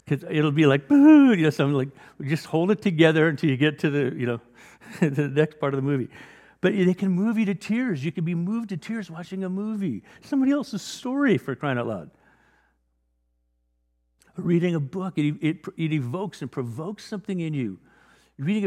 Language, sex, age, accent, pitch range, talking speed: English, male, 50-69, American, 105-170 Hz, 205 wpm